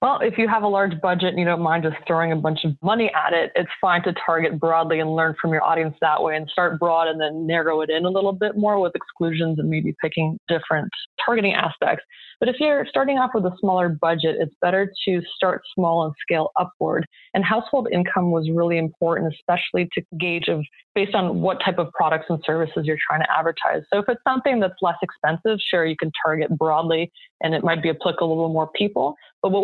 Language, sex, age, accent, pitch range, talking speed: English, female, 20-39, American, 160-185 Hz, 230 wpm